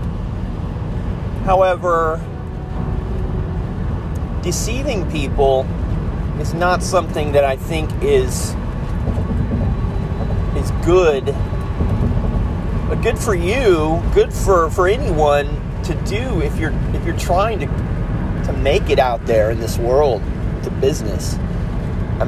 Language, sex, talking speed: English, male, 105 wpm